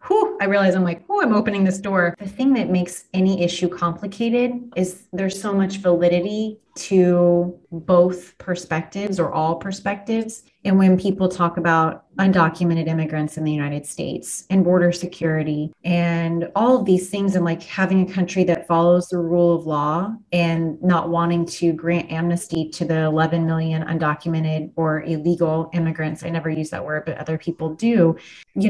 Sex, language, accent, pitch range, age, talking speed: female, English, American, 165-190 Hz, 30-49, 170 wpm